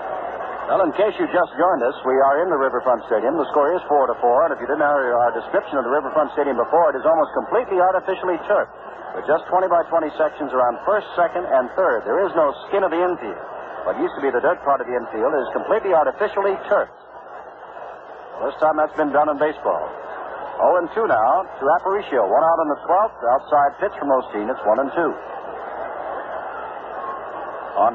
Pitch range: 140-190 Hz